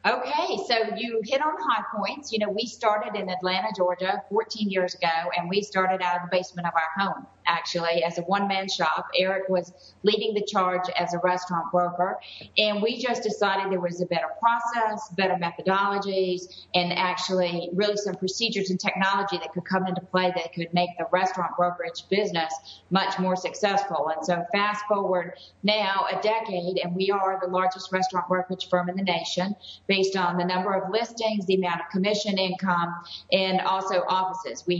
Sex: female